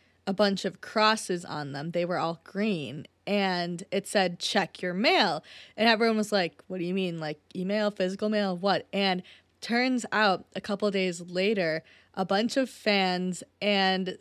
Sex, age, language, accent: female, 20-39, English, American